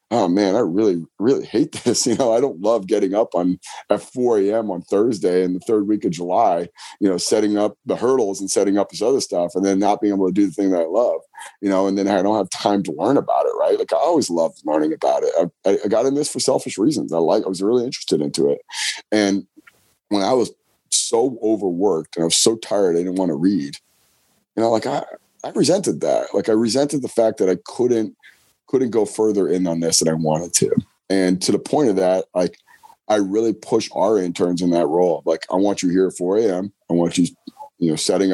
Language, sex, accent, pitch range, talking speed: English, male, American, 90-110 Hz, 245 wpm